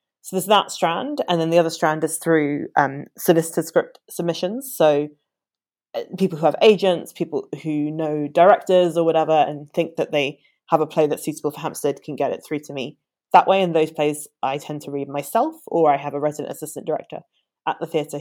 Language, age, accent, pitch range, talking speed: English, 20-39, British, 150-175 Hz, 210 wpm